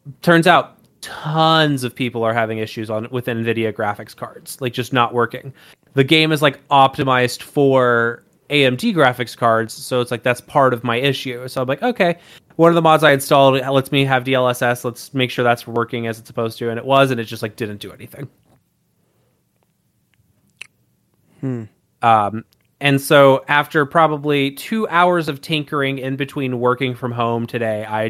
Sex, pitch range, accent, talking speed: male, 120-150 Hz, American, 180 wpm